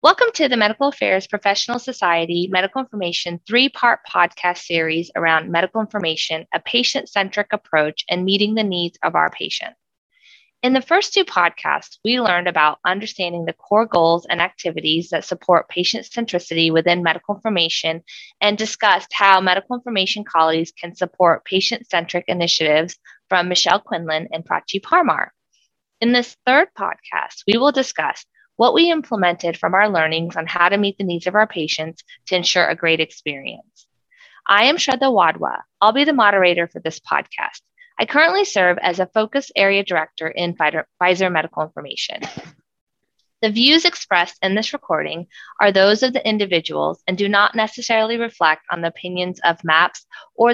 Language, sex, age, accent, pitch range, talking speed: English, female, 20-39, American, 170-225 Hz, 160 wpm